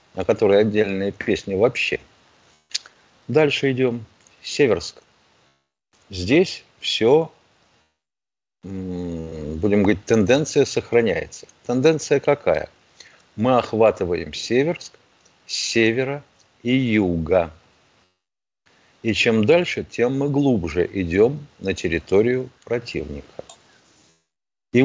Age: 50-69